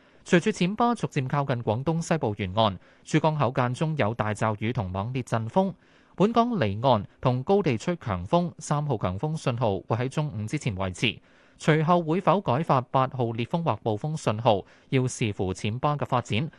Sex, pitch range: male, 110-155 Hz